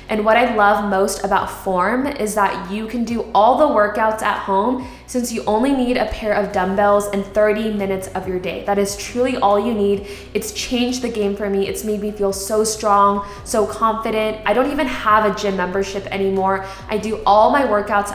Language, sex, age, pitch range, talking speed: English, female, 10-29, 195-220 Hz, 210 wpm